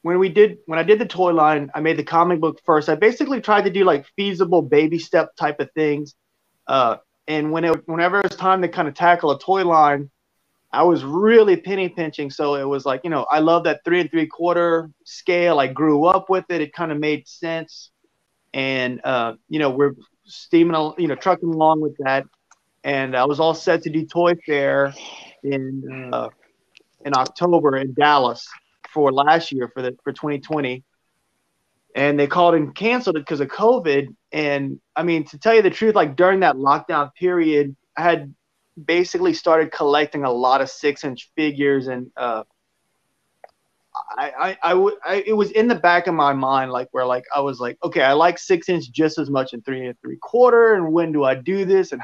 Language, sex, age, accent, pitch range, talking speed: English, male, 30-49, American, 140-175 Hz, 205 wpm